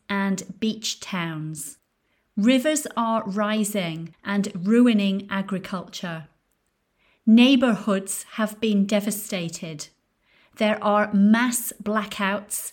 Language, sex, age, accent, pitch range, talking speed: English, female, 40-59, British, 195-235 Hz, 80 wpm